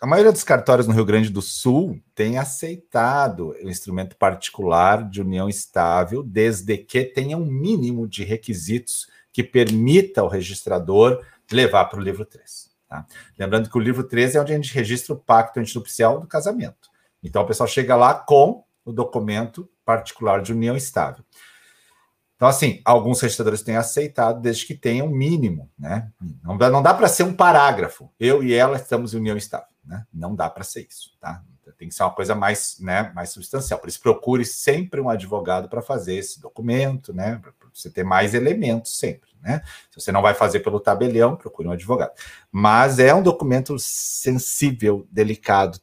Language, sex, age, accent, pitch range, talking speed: Portuguese, male, 40-59, Brazilian, 105-135 Hz, 175 wpm